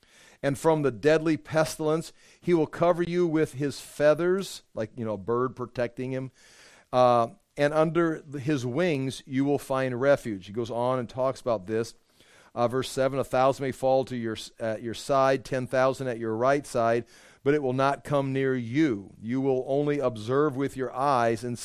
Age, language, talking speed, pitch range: 40-59, English, 185 wpm, 125-155 Hz